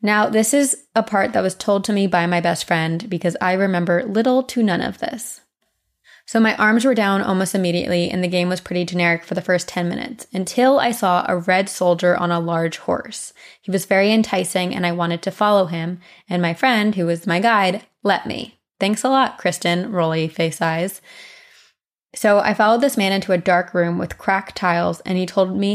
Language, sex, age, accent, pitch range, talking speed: English, female, 20-39, American, 175-210 Hz, 215 wpm